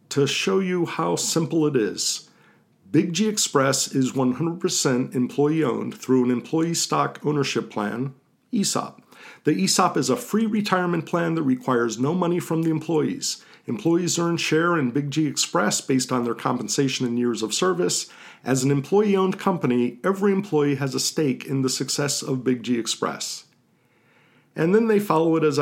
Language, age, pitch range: English, 50-69, 140-175 Hz